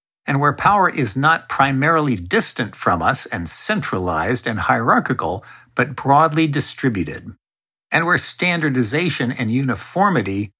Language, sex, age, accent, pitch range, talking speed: English, male, 60-79, American, 110-140 Hz, 120 wpm